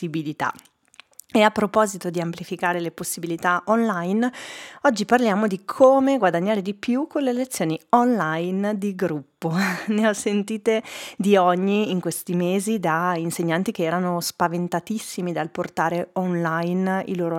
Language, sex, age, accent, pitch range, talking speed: Italian, female, 30-49, native, 170-205 Hz, 135 wpm